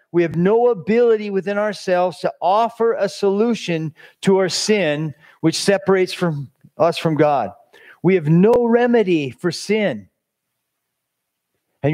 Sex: male